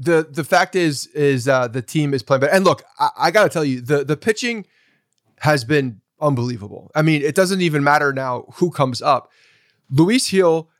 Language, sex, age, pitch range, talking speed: English, male, 30-49, 125-155 Hz, 205 wpm